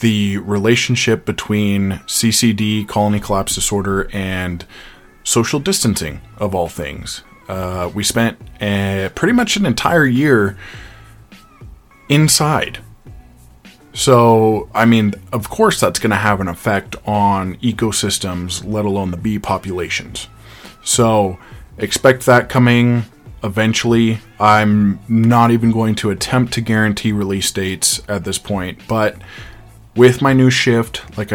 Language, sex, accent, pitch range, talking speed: English, male, American, 100-115 Hz, 125 wpm